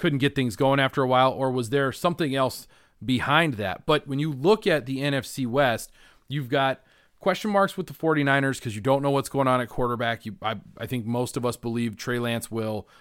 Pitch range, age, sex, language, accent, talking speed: 115-140 Hz, 30-49, male, English, American, 225 wpm